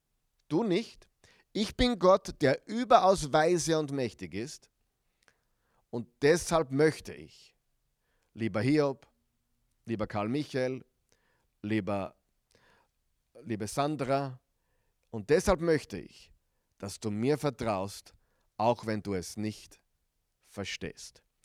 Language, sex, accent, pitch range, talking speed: German, male, German, 110-175 Hz, 105 wpm